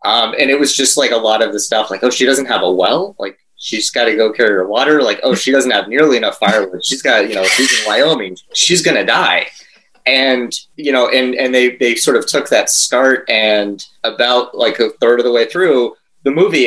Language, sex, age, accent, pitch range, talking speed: English, male, 30-49, American, 95-135 Hz, 245 wpm